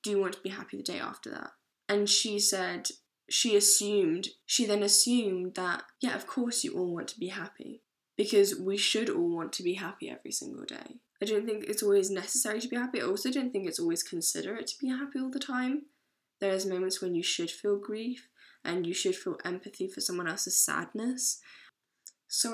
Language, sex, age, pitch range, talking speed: English, female, 10-29, 180-225 Hz, 205 wpm